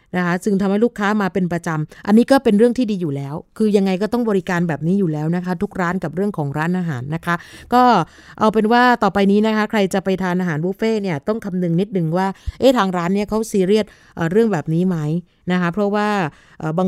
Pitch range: 175-215 Hz